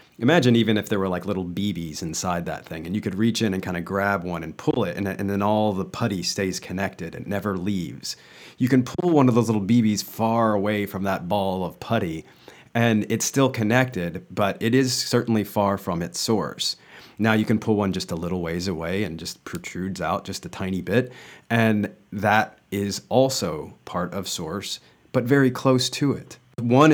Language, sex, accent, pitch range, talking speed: English, male, American, 95-115 Hz, 205 wpm